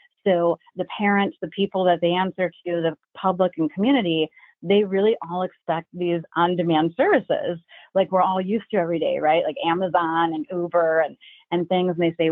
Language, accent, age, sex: English, American, 30-49, female